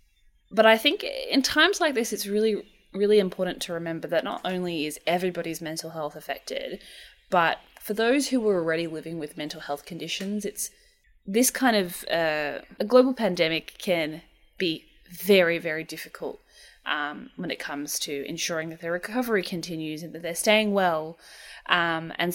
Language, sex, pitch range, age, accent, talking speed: English, female, 165-215 Hz, 20-39, Australian, 165 wpm